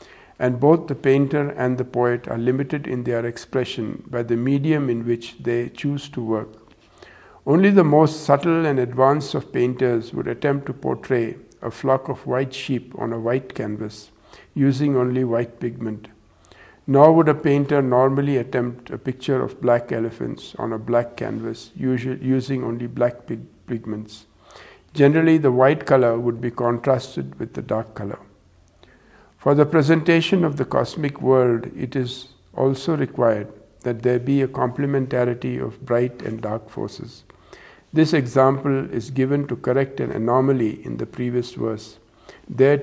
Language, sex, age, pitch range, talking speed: English, male, 50-69, 115-140 Hz, 155 wpm